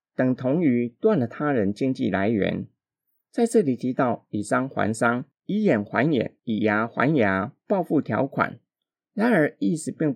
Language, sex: Chinese, male